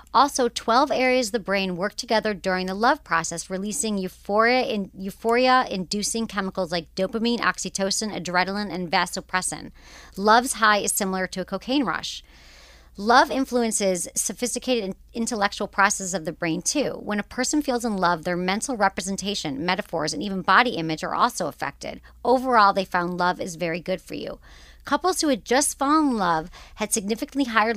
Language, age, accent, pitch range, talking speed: English, 40-59, American, 180-240 Hz, 160 wpm